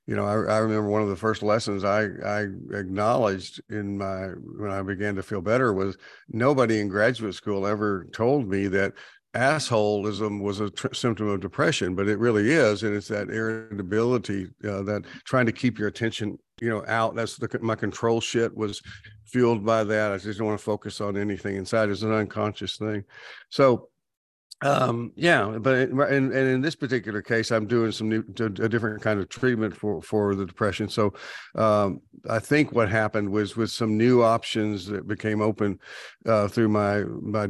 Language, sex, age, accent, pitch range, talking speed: English, male, 50-69, American, 105-125 Hz, 190 wpm